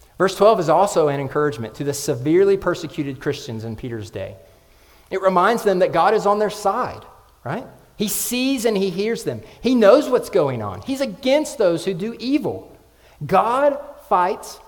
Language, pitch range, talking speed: English, 120-205 Hz, 175 wpm